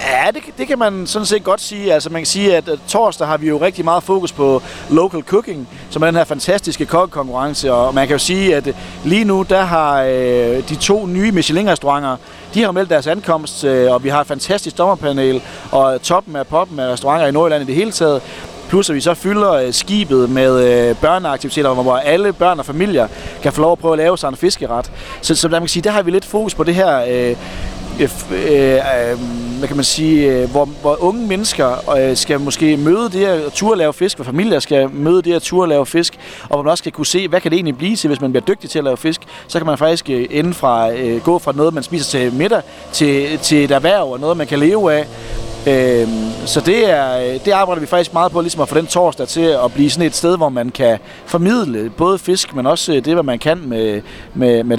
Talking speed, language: 235 wpm, Danish